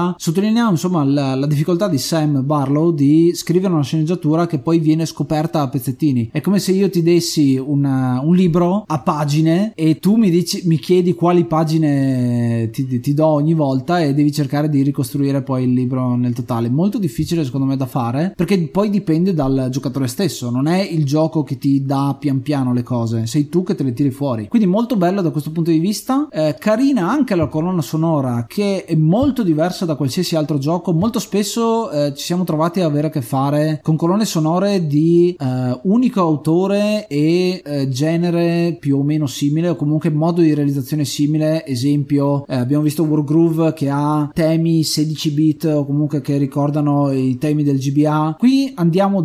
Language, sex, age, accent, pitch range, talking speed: Italian, male, 30-49, native, 145-175 Hz, 185 wpm